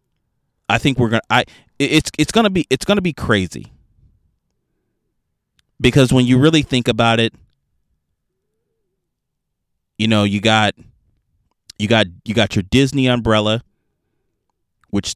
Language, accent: English, American